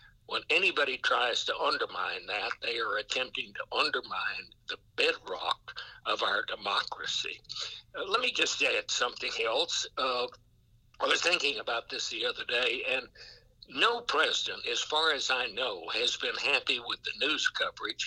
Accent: American